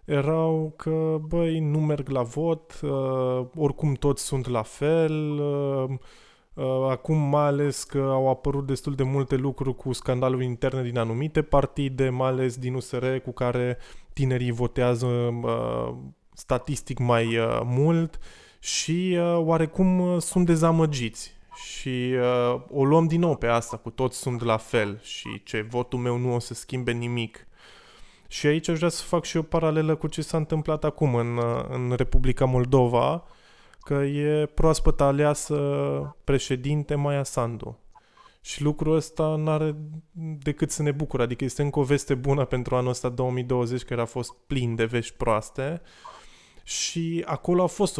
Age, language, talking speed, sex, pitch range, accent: 20-39, Romanian, 150 wpm, male, 125-155 Hz, native